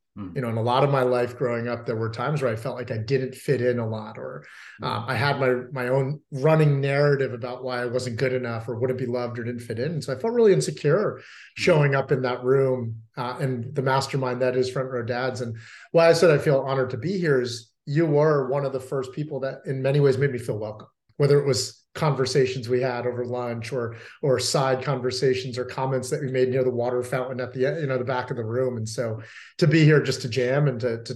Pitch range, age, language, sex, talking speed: 120-135 Hz, 30-49, English, male, 255 wpm